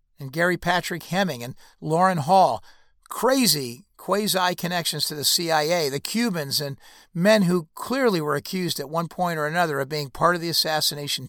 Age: 50-69